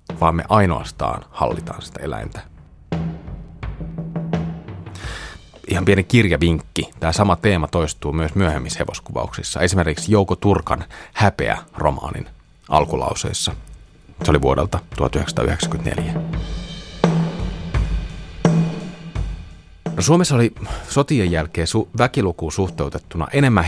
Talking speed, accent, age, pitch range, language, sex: 85 wpm, native, 30-49, 80-110 Hz, Finnish, male